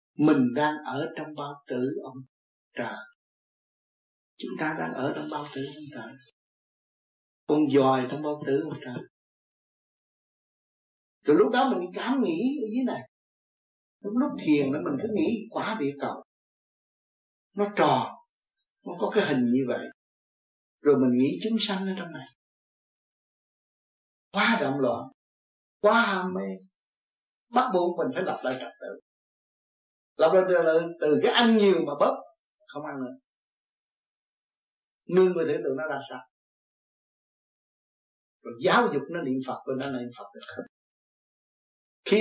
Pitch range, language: 130-205 Hz, Vietnamese